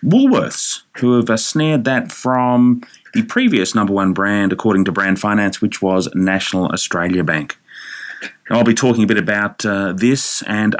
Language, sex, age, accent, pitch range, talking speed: English, male, 30-49, Australian, 105-165 Hz, 165 wpm